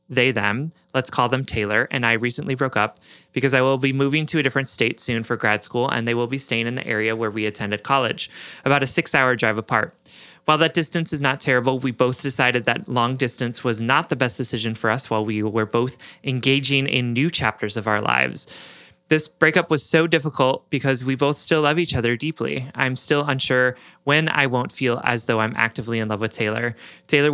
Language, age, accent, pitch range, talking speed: English, 30-49, American, 120-145 Hz, 220 wpm